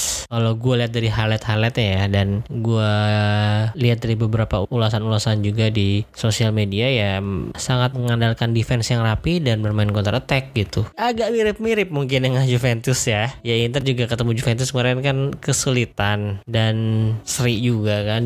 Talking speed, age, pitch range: 150 wpm, 20-39, 115-150 Hz